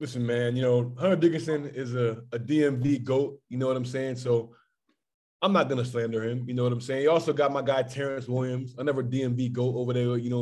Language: English